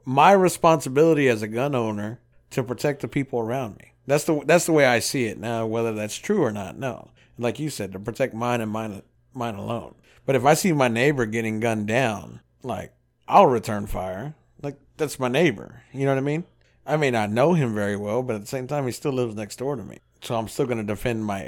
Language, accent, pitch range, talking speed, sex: English, American, 115-140 Hz, 235 wpm, male